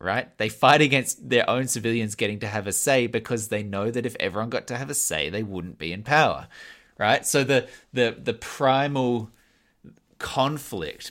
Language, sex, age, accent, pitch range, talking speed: English, male, 20-39, Australian, 105-125 Hz, 190 wpm